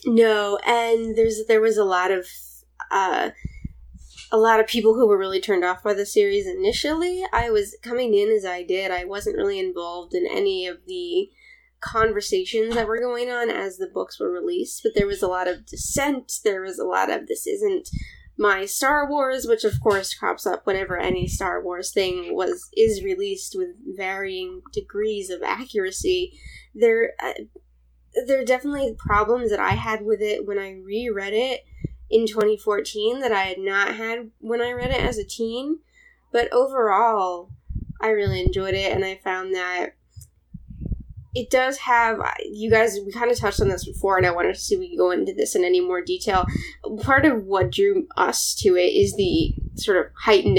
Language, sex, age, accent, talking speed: English, female, 20-39, American, 190 wpm